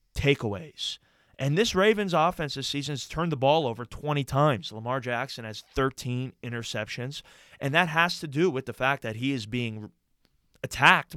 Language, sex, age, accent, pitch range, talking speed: English, male, 20-39, American, 115-145 Hz, 170 wpm